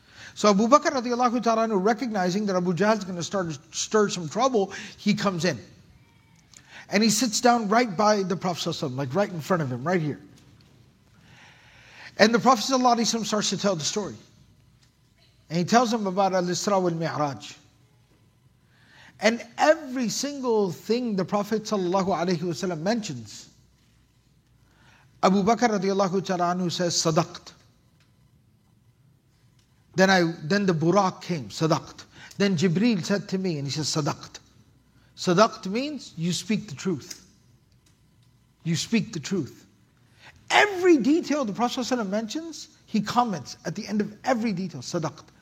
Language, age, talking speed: English, 50-69, 140 wpm